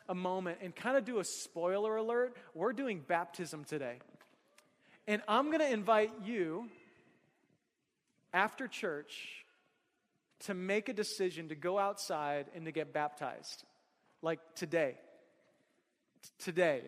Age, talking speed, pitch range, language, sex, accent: 30-49, 125 wpm, 175-225 Hz, English, male, American